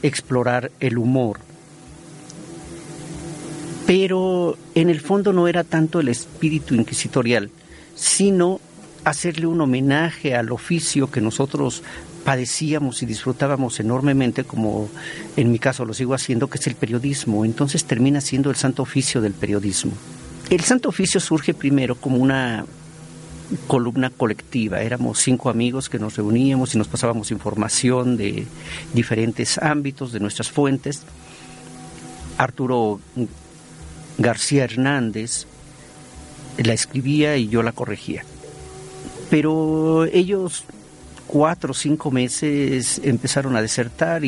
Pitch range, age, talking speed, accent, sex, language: 115-155 Hz, 50-69, 120 wpm, Mexican, male, Spanish